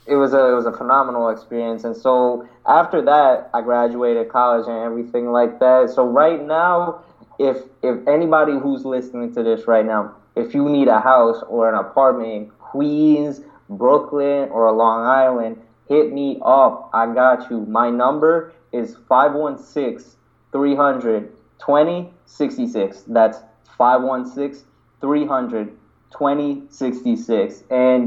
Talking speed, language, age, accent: 130 wpm, English, 20-39, American